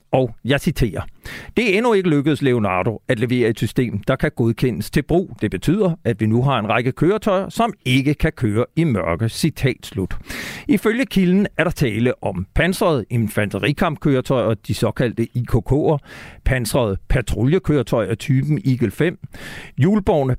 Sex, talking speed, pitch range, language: male, 155 wpm, 120-170 Hz, Danish